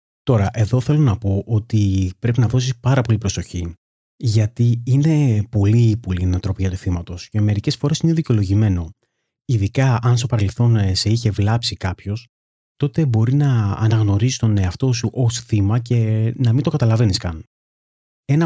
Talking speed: 155 wpm